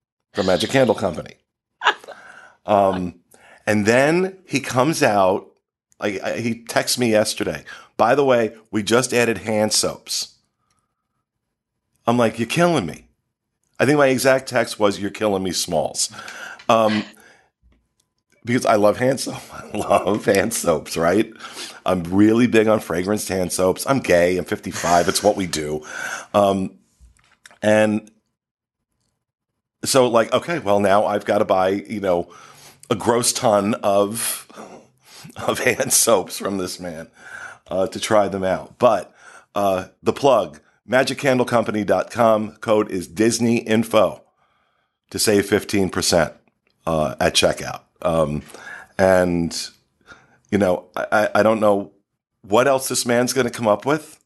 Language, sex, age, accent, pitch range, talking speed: English, male, 50-69, American, 95-120 Hz, 135 wpm